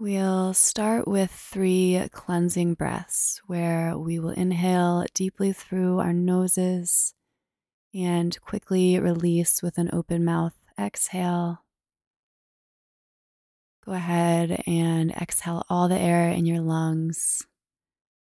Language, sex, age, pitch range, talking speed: English, female, 20-39, 170-185 Hz, 105 wpm